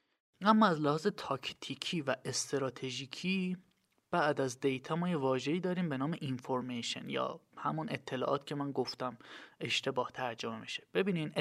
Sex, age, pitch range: male, 20-39, 130-170 Hz